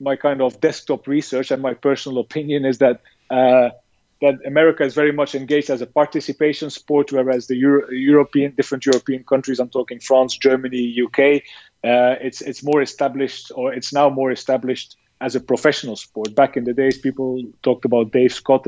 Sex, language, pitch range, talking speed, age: male, English, 125-145 Hz, 185 wpm, 30-49